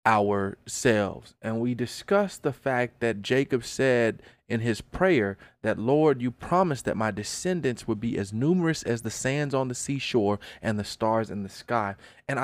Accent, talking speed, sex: American, 175 wpm, male